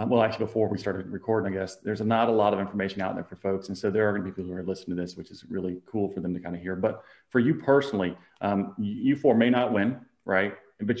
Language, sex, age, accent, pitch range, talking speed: English, male, 30-49, American, 100-120 Hz, 290 wpm